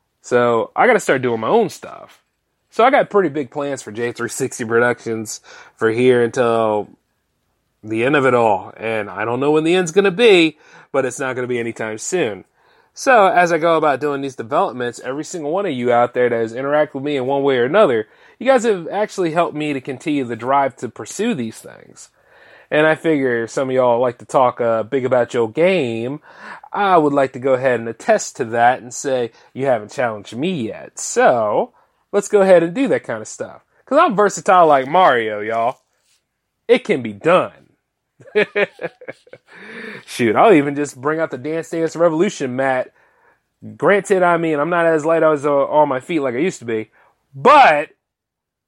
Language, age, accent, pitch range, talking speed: English, 30-49, American, 120-170 Hz, 200 wpm